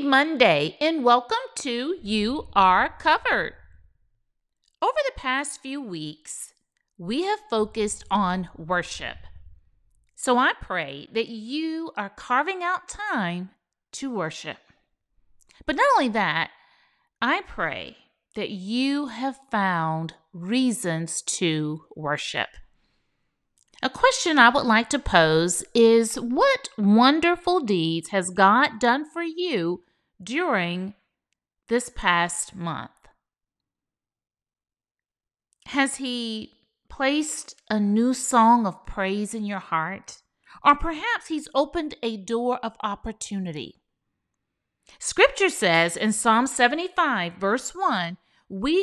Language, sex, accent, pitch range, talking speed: English, female, American, 185-280 Hz, 110 wpm